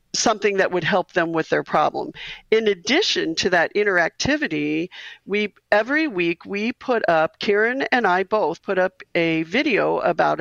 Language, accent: English, American